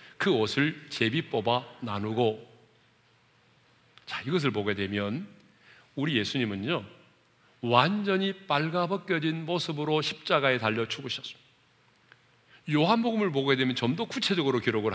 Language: Korean